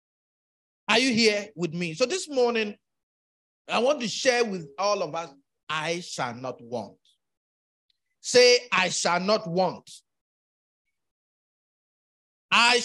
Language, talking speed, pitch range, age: English, 120 wpm, 200-330 Hz, 50-69